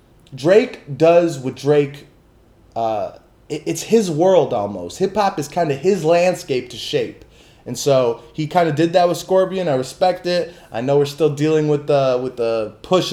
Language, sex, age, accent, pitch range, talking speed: English, male, 20-39, American, 125-175 Hz, 185 wpm